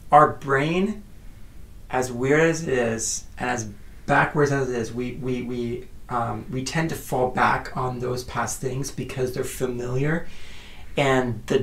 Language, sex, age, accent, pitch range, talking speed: English, male, 30-49, American, 115-140 Hz, 160 wpm